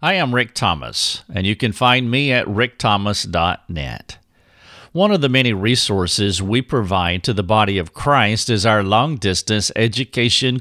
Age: 50-69